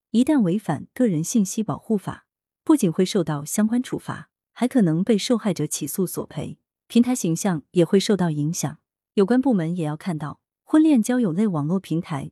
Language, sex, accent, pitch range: Chinese, female, native, 160-225 Hz